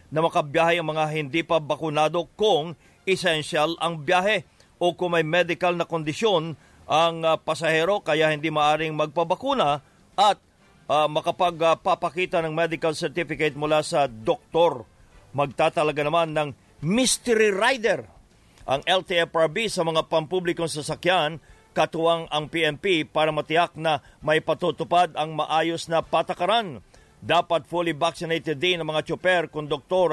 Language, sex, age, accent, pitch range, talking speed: English, male, 50-69, Filipino, 155-175 Hz, 125 wpm